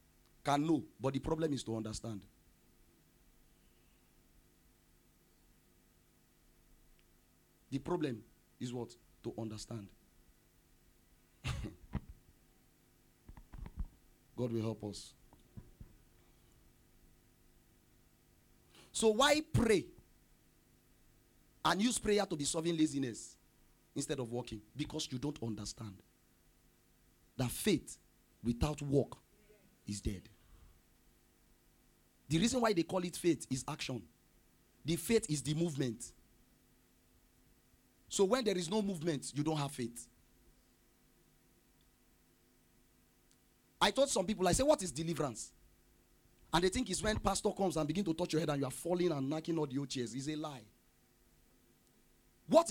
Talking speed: 115 wpm